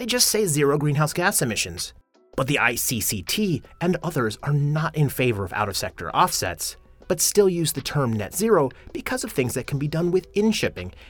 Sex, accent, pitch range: male, American, 105-160 Hz